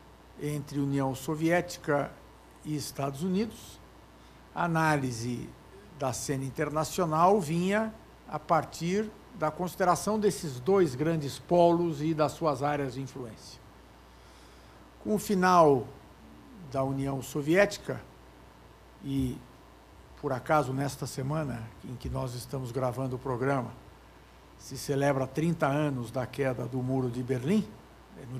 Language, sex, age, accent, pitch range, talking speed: Portuguese, male, 60-79, Brazilian, 125-170 Hz, 115 wpm